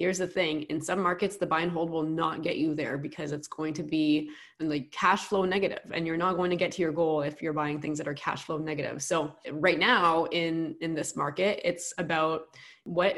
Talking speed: 240 wpm